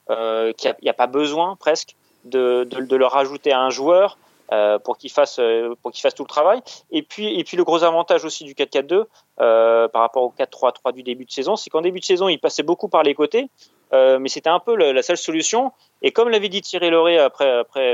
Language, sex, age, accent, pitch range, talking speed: French, male, 30-49, French, 135-205 Hz, 245 wpm